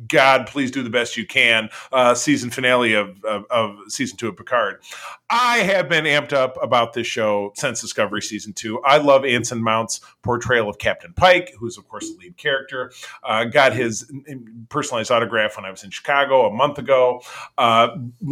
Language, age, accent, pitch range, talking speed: English, 40-59, American, 110-140 Hz, 185 wpm